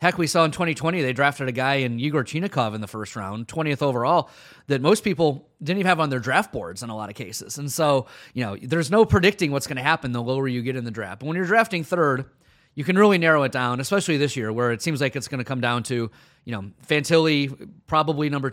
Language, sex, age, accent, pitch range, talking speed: English, male, 30-49, American, 120-165 Hz, 260 wpm